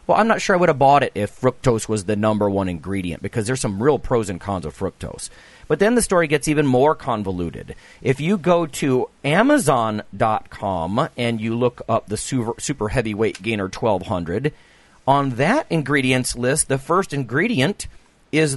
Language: English